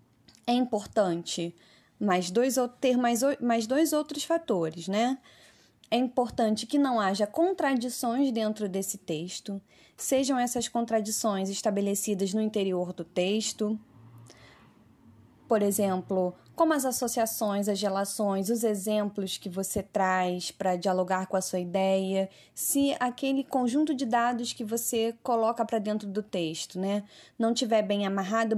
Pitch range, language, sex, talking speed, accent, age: 190-245 Hz, Portuguese, female, 130 wpm, Brazilian, 20-39